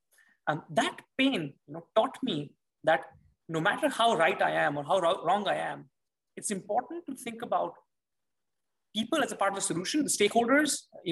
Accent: Indian